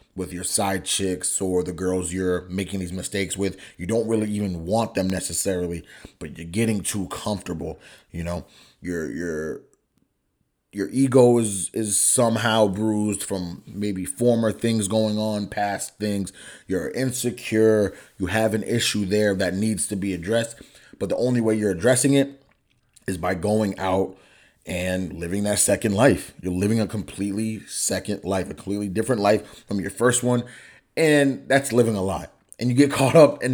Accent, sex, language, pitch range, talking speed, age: American, male, English, 95-120 Hz, 170 wpm, 30-49